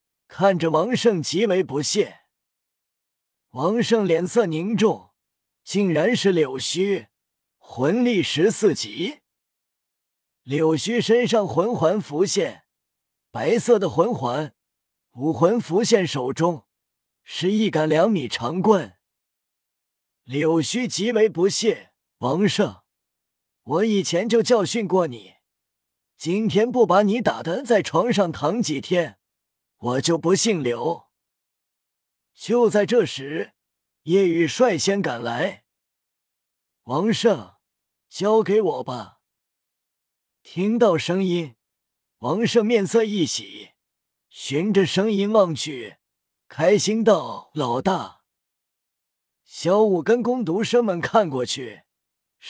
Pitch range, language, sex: 150-220 Hz, Chinese, male